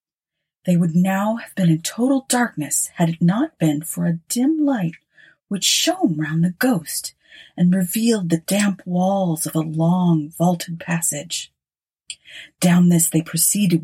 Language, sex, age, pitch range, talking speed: English, female, 30-49, 160-220 Hz, 150 wpm